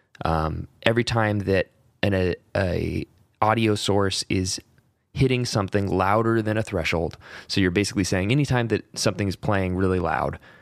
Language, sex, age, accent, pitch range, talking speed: English, male, 20-39, American, 90-115 Hz, 155 wpm